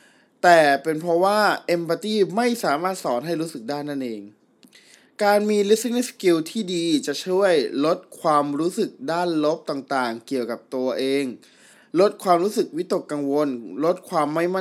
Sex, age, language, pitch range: male, 20-39, Thai, 130-175 Hz